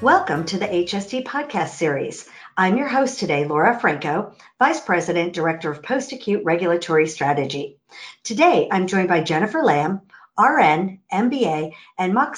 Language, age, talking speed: English, 50-69, 140 wpm